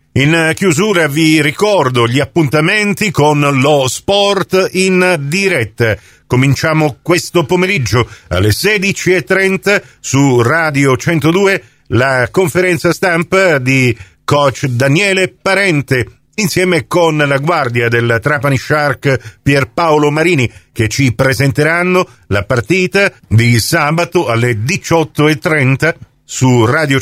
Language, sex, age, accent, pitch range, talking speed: Italian, male, 50-69, native, 120-160 Hz, 100 wpm